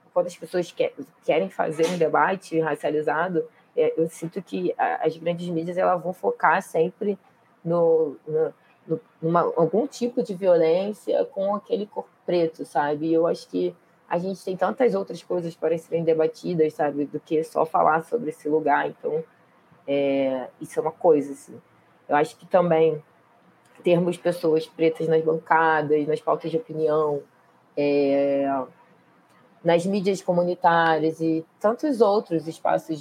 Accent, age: Brazilian, 20-39